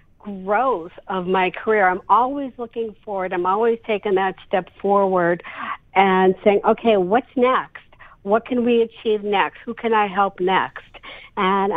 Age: 60-79